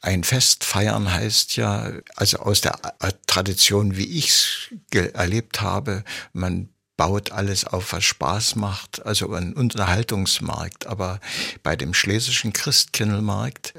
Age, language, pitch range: 60-79, German, 95-115 Hz